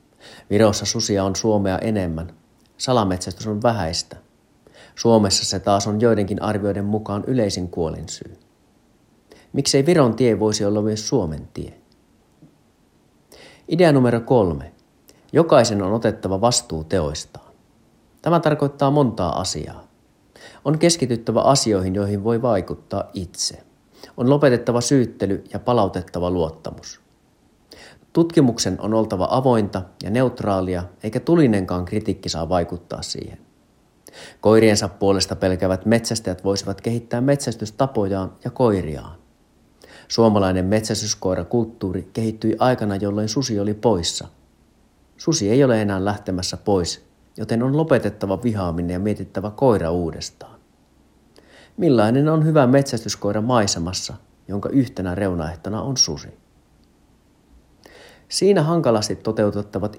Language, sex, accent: Finnish, male, native